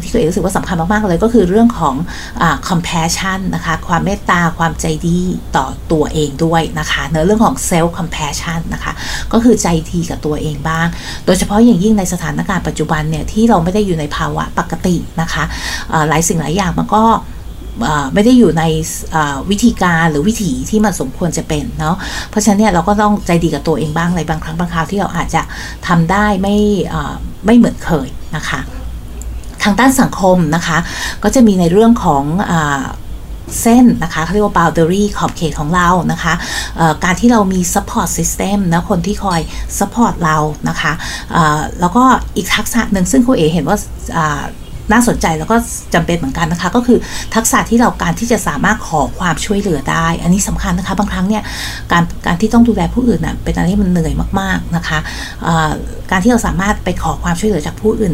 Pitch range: 165-210 Hz